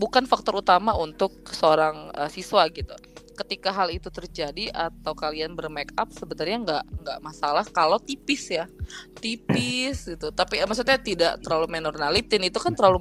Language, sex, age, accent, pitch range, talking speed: Indonesian, female, 20-39, native, 160-220 Hz, 155 wpm